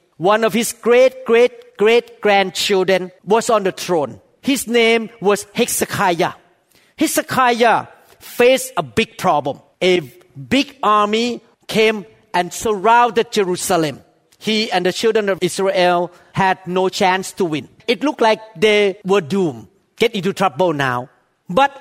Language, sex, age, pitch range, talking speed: English, male, 50-69, 190-270 Hz, 135 wpm